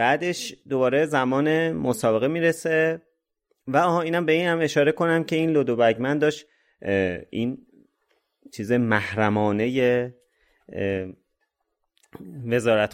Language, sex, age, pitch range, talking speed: Persian, male, 30-49, 110-135 Hz, 95 wpm